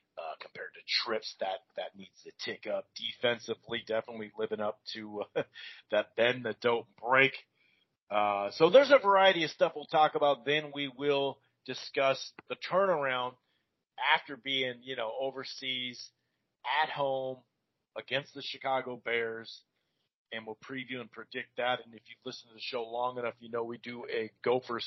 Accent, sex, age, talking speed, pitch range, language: American, male, 40-59, 165 wpm, 115-135 Hz, English